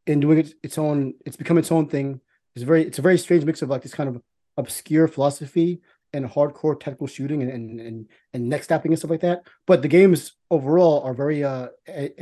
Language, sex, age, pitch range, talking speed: English, male, 30-49, 135-165 Hz, 220 wpm